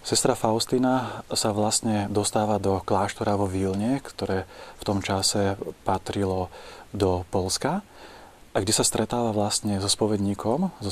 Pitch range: 100-110 Hz